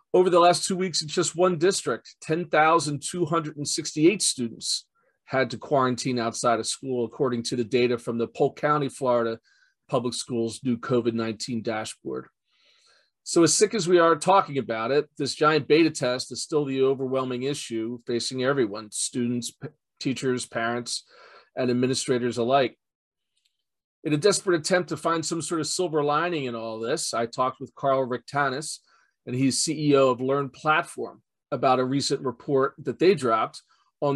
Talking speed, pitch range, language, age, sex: 160 wpm, 125-155 Hz, English, 40-59, male